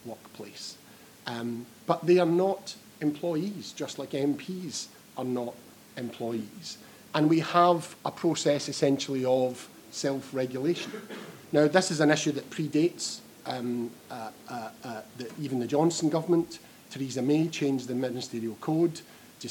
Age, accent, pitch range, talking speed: 40-59, British, 125-160 Hz, 135 wpm